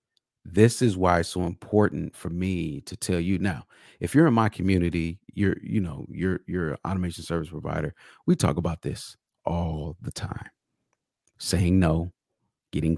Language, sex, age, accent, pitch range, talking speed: English, male, 40-59, American, 90-115 Hz, 160 wpm